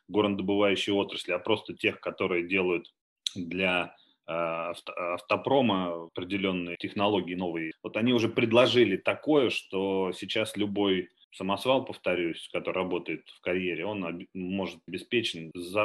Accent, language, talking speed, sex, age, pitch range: native, Russian, 110 wpm, male, 30-49, 90-110 Hz